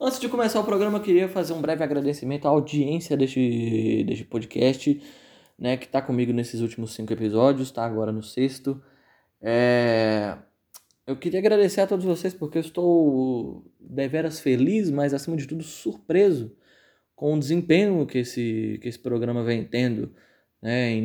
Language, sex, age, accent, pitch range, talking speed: Portuguese, male, 20-39, Brazilian, 120-145 Hz, 160 wpm